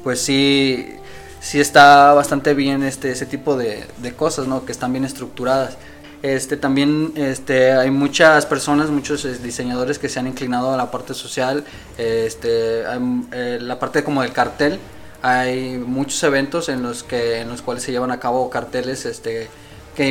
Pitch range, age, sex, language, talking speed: 125-140 Hz, 20-39, male, Spanish, 170 wpm